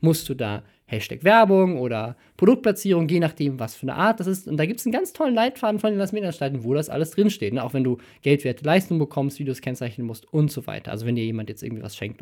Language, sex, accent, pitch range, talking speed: German, male, German, 140-190 Hz, 250 wpm